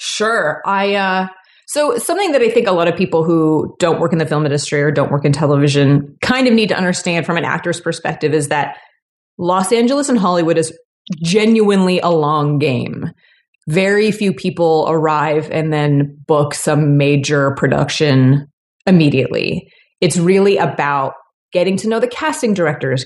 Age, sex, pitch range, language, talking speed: 30-49, female, 150-200 Hz, English, 165 wpm